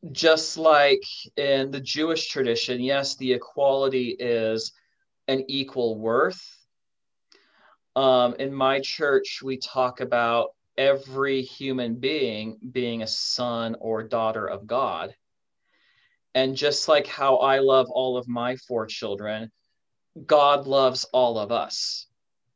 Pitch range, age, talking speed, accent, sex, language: 120-140 Hz, 30-49, 120 wpm, American, male, Hebrew